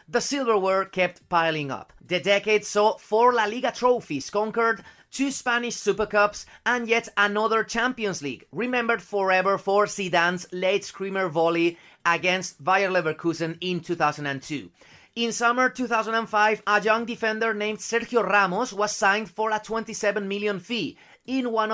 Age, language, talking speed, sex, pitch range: 30-49, English, 145 wpm, male, 180-225 Hz